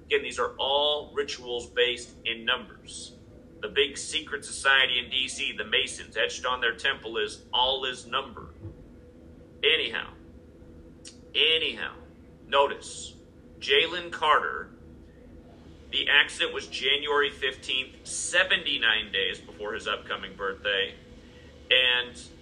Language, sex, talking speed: English, male, 105 wpm